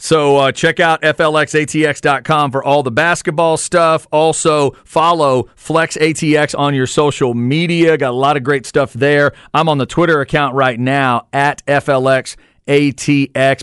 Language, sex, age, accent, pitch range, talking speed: English, male, 40-59, American, 130-160 Hz, 150 wpm